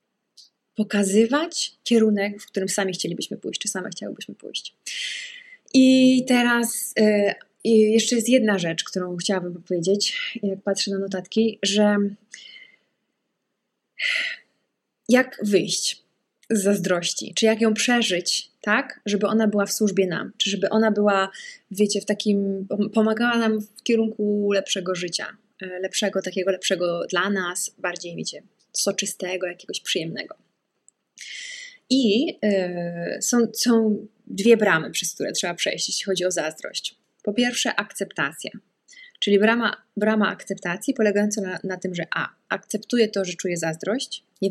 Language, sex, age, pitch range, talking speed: English, female, 20-39, 190-225 Hz, 130 wpm